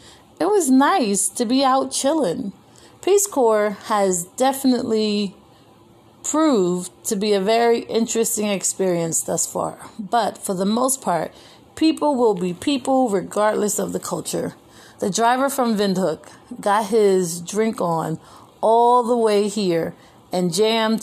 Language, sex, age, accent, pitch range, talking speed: English, female, 30-49, American, 175-220 Hz, 135 wpm